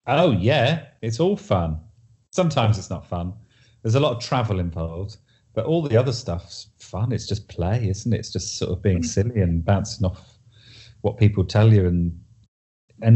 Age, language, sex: 40-59, English, male